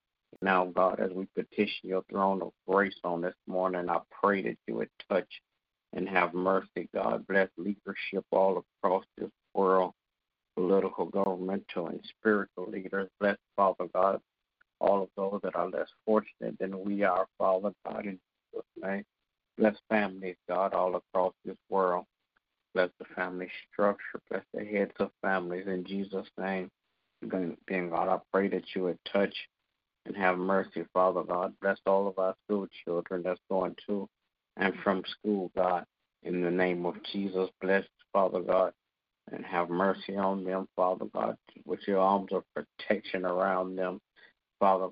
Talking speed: 160 wpm